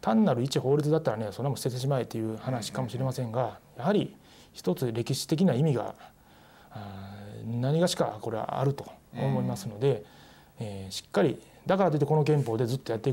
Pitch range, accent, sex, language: 110-150 Hz, native, male, Japanese